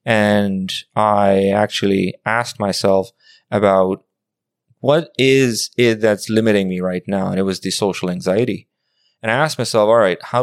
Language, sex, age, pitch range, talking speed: English, male, 20-39, 95-110 Hz, 155 wpm